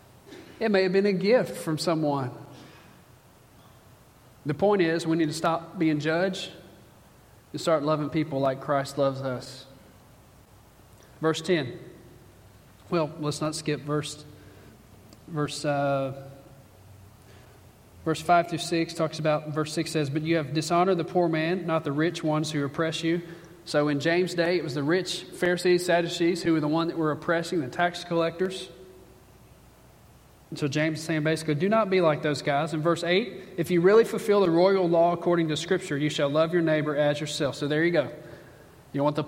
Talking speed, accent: 175 wpm, American